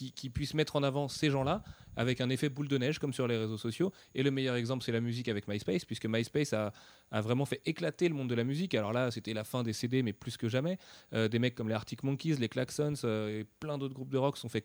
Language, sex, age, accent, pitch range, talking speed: French, male, 30-49, French, 115-145 Hz, 285 wpm